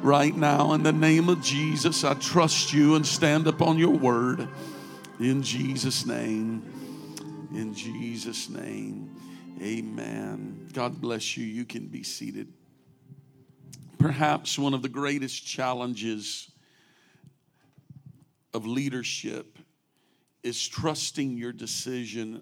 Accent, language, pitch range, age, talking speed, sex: American, English, 125-150 Hz, 50-69, 110 wpm, male